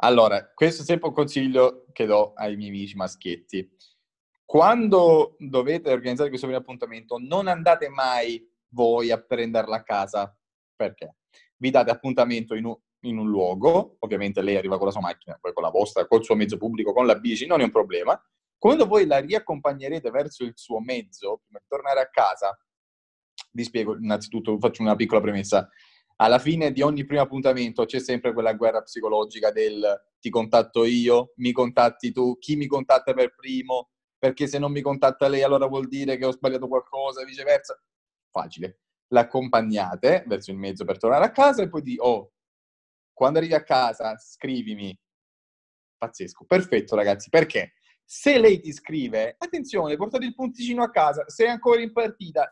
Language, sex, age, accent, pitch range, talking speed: Italian, male, 20-39, native, 115-170 Hz, 170 wpm